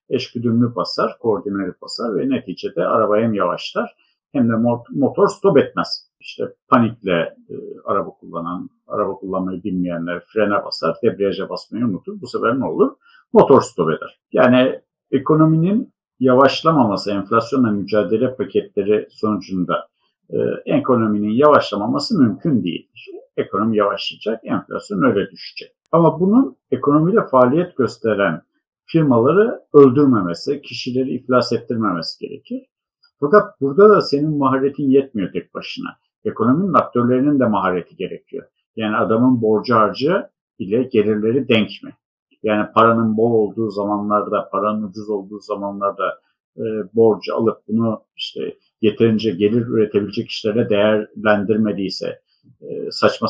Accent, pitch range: native, 105-140 Hz